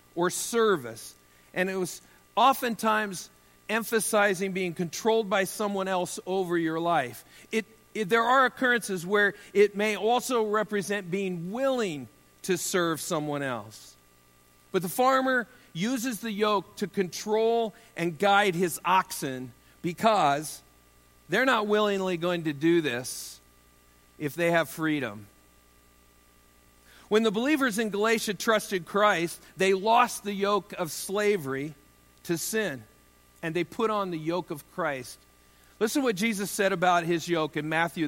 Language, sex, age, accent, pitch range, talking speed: English, male, 50-69, American, 155-215 Hz, 140 wpm